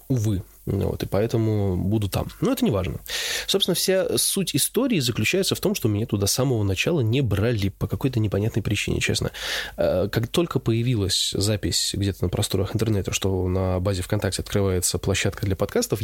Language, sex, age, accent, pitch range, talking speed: Russian, male, 20-39, native, 100-120 Hz, 170 wpm